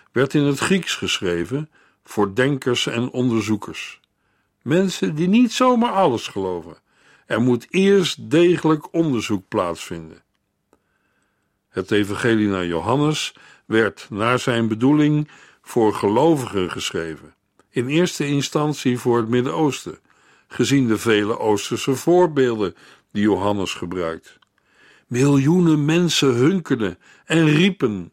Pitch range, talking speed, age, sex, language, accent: 110-155 Hz, 110 wpm, 60-79, male, Dutch, Dutch